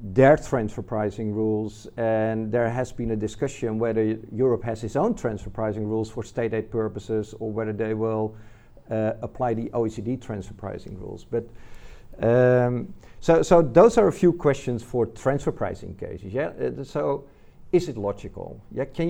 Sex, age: male, 50-69